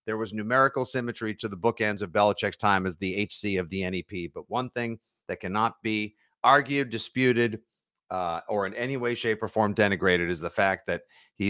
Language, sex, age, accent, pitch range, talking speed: English, male, 50-69, American, 100-125 Hz, 200 wpm